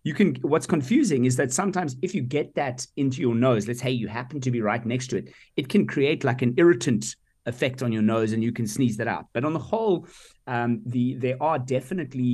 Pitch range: 110-130 Hz